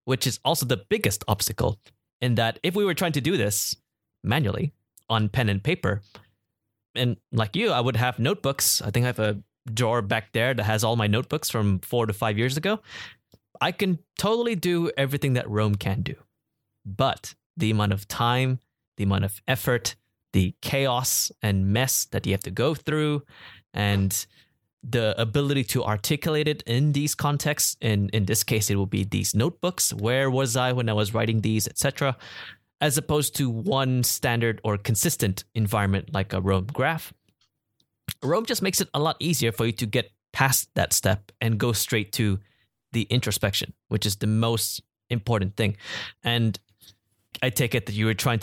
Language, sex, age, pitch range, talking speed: English, male, 20-39, 105-135 Hz, 185 wpm